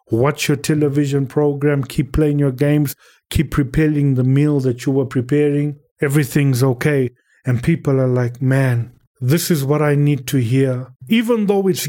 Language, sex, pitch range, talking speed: English, male, 130-165 Hz, 165 wpm